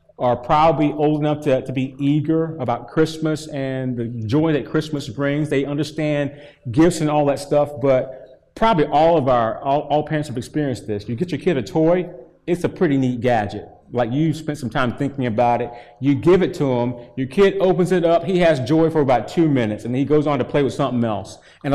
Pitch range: 125-165 Hz